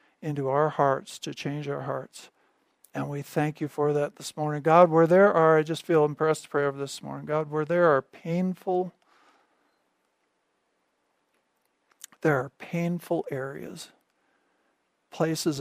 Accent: American